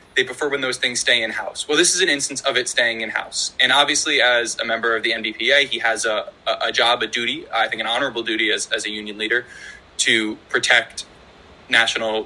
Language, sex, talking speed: English, male, 215 wpm